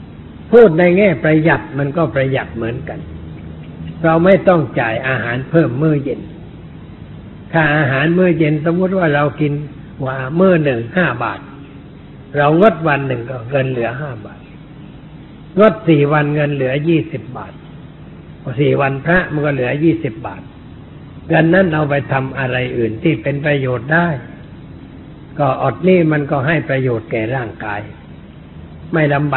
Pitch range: 120-160 Hz